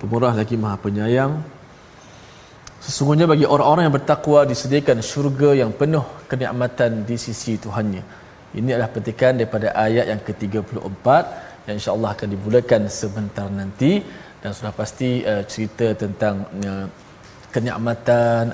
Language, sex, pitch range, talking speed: Malayalam, male, 105-125 Hz, 125 wpm